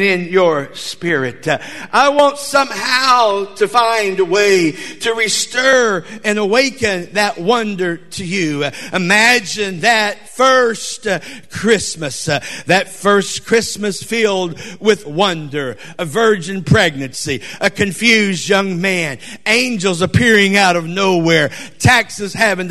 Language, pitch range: Russian, 175-220 Hz